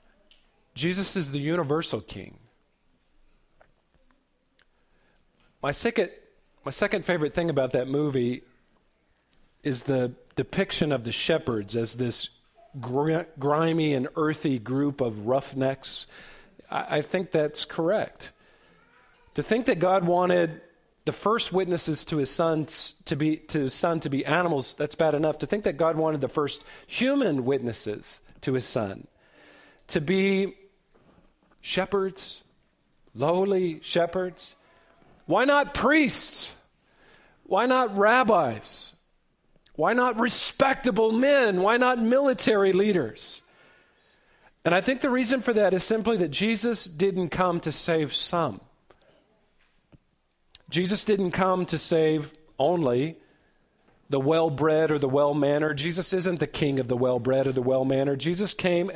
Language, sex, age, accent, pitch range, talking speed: English, male, 40-59, American, 140-195 Hz, 125 wpm